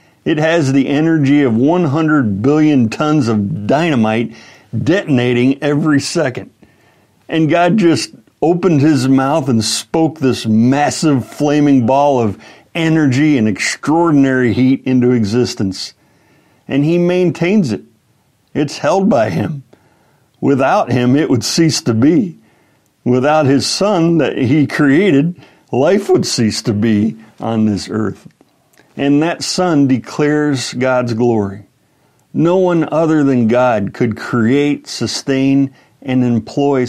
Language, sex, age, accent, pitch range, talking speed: English, male, 60-79, American, 120-150 Hz, 125 wpm